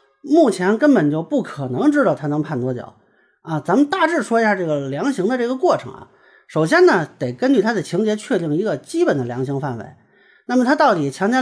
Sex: male